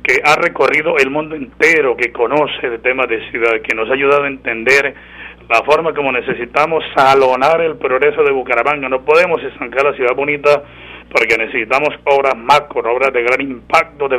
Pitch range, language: 125-170 Hz, Spanish